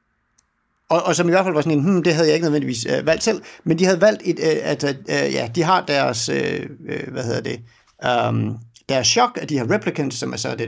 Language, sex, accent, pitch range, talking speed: Danish, male, native, 125-175 Hz, 255 wpm